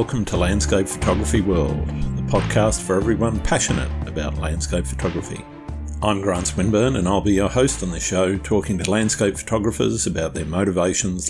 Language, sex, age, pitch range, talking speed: English, male, 50-69, 85-100 Hz, 165 wpm